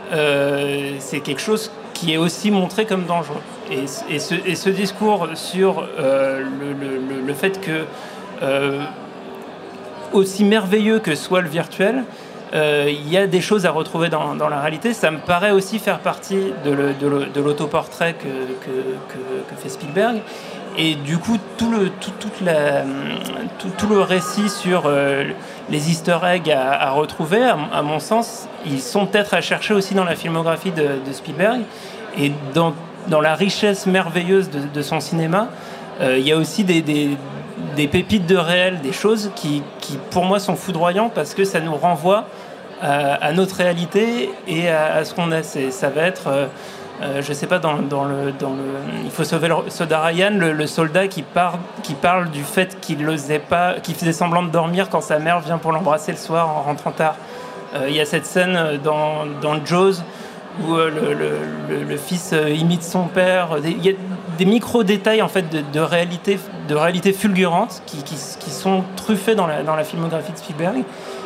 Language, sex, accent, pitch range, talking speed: French, male, French, 150-195 Hz, 195 wpm